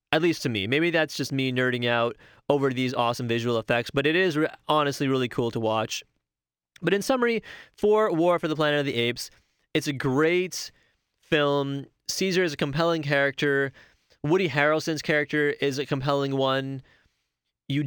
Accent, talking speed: American, 170 wpm